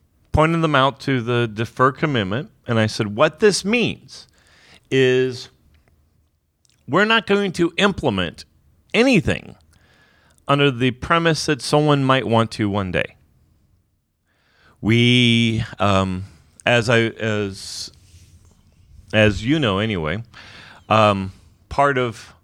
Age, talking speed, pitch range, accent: 40-59, 110 wpm, 95-125 Hz, American